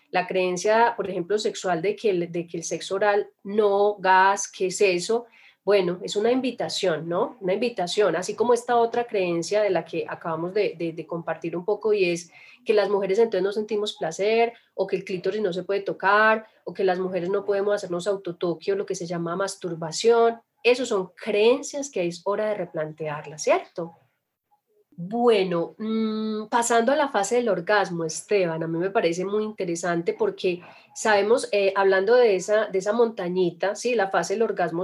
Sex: female